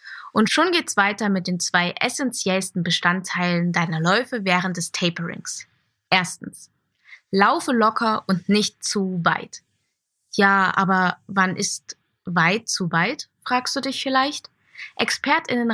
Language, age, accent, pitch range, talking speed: German, 20-39, German, 180-230 Hz, 125 wpm